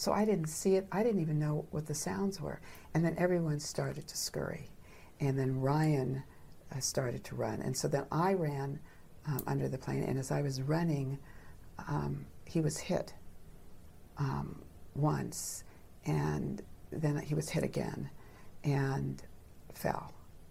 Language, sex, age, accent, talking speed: English, female, 60-79, American, 155 wpm